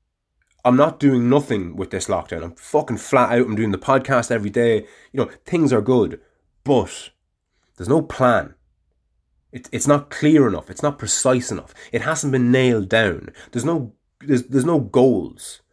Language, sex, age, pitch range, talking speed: English, male, 20-39, 100-130 Hz, 175 wpm